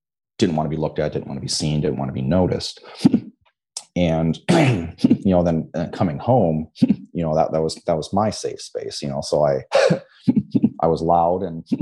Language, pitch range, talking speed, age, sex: English, 80-110 Hz, 205 wpm, 30-49, male